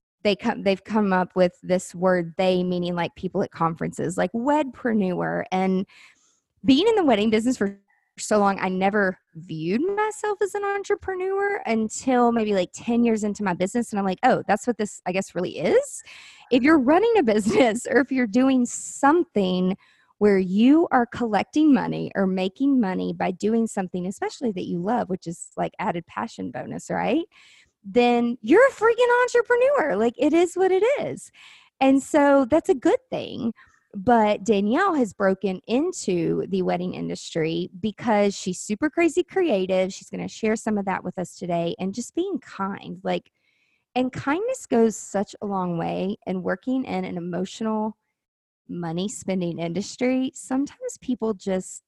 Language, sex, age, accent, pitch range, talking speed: English, female, 20-39, American, 185-270 Hz, 170 wpm